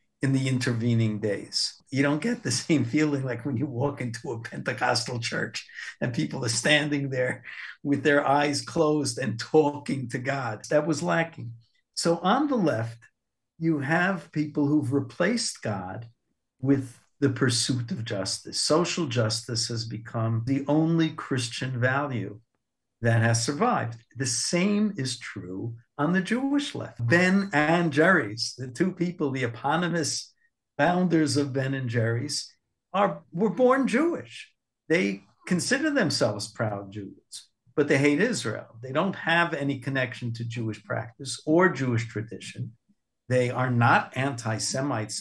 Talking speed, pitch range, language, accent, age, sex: 145 wpm, 120-155 Hz, English, American, 50-69, male